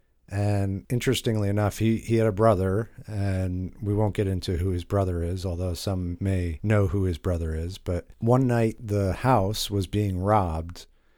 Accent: American